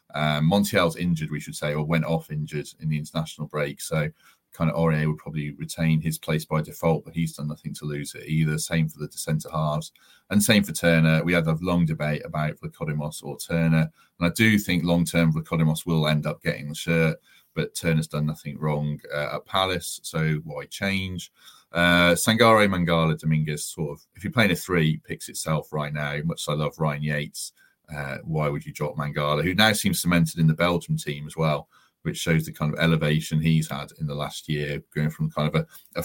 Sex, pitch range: male, 75-85 Hz